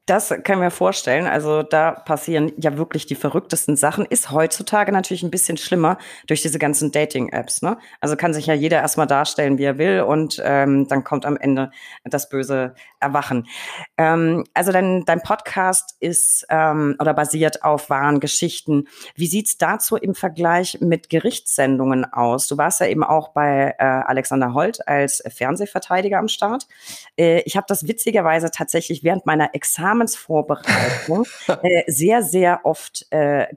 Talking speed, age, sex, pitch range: 165 wpm, 30-49, female, 140-175 Hz